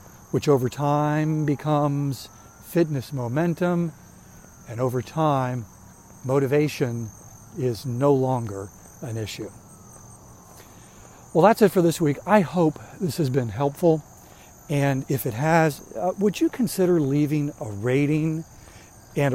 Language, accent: English, American